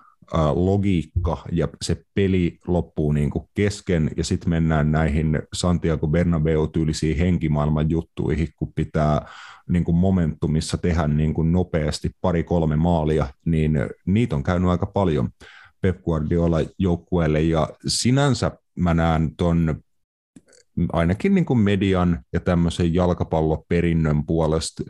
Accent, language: native, Finnish